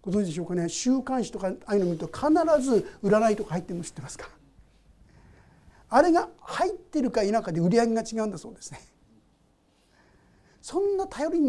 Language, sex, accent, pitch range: Japanese, male, native, 190-295 Hz